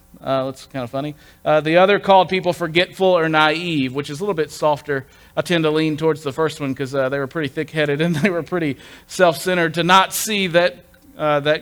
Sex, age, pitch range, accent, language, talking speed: male, 40-59, 135-165 Hz, American, English, 225 wpm